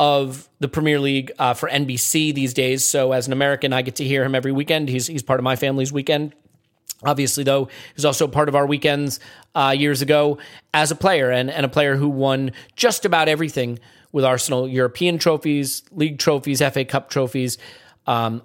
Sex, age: male, 30-49